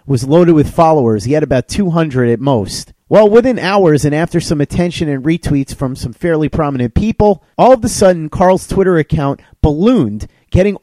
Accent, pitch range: American, 140-195 Hz